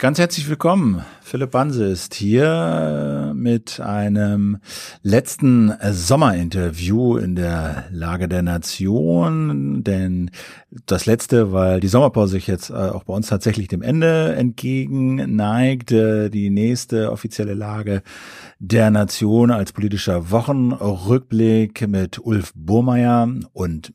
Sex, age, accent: male, 50-69, German